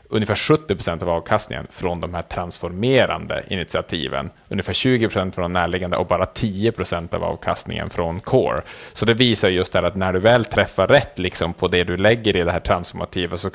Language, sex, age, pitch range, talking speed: Swedish, male, 30-49, 90-100 Hz, 190 wpm